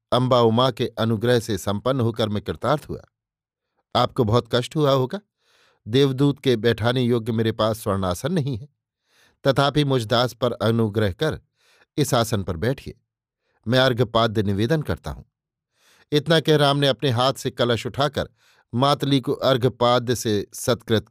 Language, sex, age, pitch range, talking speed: Hindi, male, 50-69, 115-140 Hz, 145 wpm